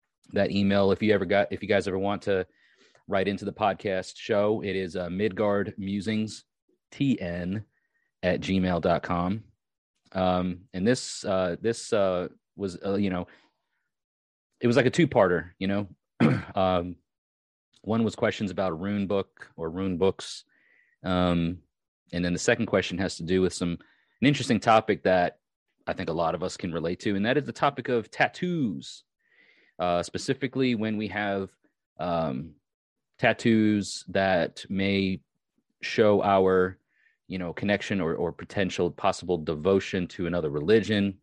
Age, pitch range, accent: 30-49, 90-105 Hz, American